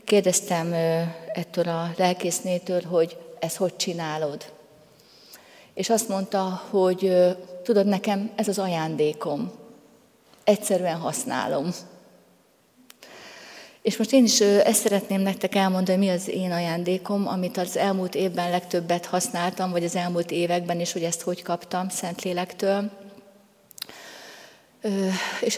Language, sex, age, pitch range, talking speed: Hungarian, female, 30-49, 170-195 Hz, 115 wpm